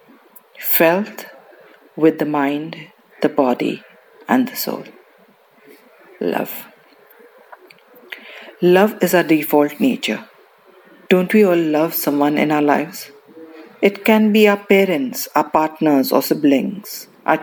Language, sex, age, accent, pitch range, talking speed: English, female, 50-69, Indian, 155-205 Hz, 115 wpm